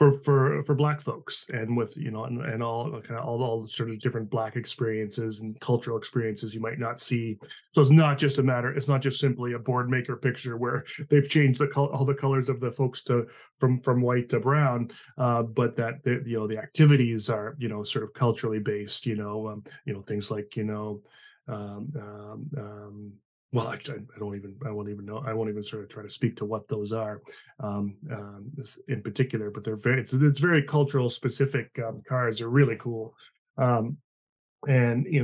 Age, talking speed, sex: 20-39, 215 wpm, male